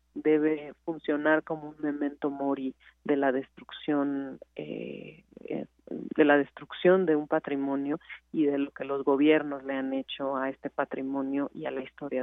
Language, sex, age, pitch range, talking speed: Spanish, female, 40-59, 140-160 Hz, 155 wpm